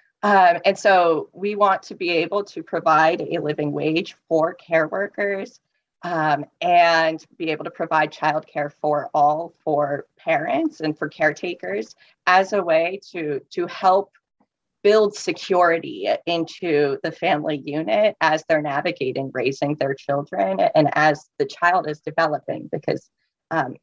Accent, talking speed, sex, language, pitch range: American, 140 wpm, female, English, 150-180 Hz